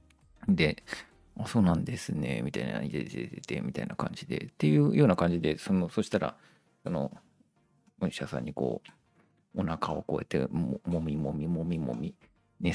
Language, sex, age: Japanese, male, 40-59